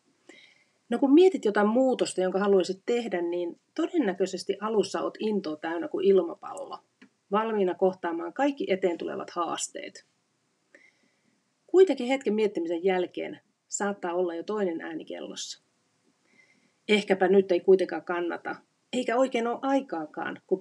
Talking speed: 120 wpm